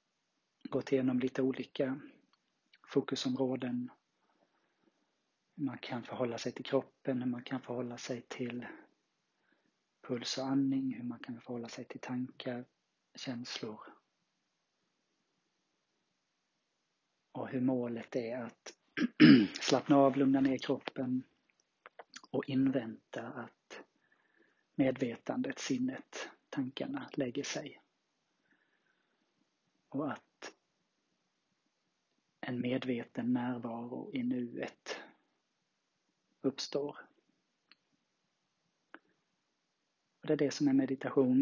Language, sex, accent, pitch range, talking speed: Swedish, male, native, 125-185 Hz, 90 wpm